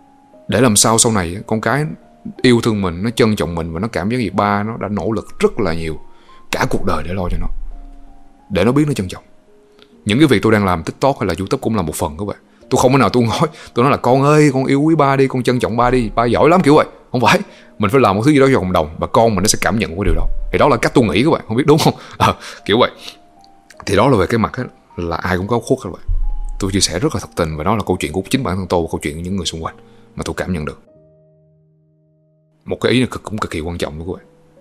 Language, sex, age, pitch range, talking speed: Vietnamese, male, 20-39, 90-135 Hz, 305 wpm